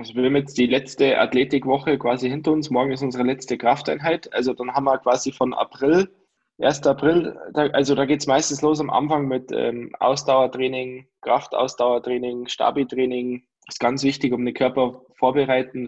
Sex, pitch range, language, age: male, 130-155 Hz, German, 10-29